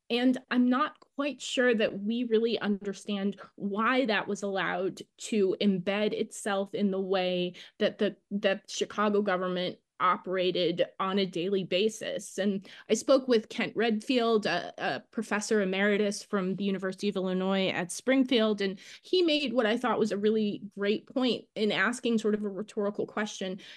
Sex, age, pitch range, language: female, 20-39, 200-240 Hz, English